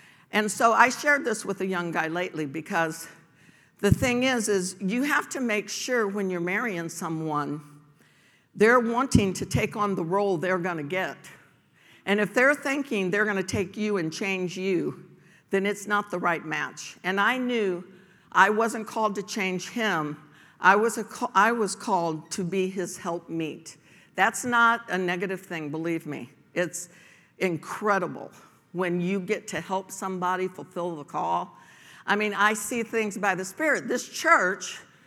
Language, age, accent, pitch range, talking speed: English, 60-79, American, 175-215 Hz, 175 wpm